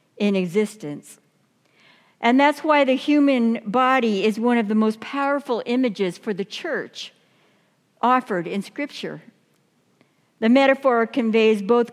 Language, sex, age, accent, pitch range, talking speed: English, female, 60-79, American, 195-245 Hz, 125 wpm